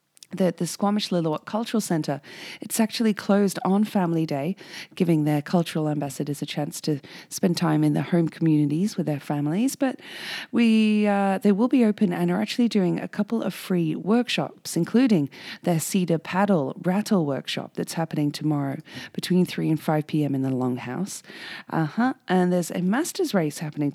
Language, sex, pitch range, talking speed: English, female, 150-200 Hz, 175 wpm